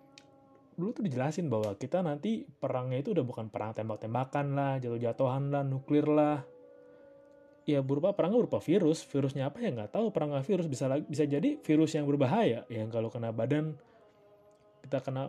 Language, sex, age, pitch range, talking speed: Indonesian, male, 20-39, 125-165 Hz, 175 wpm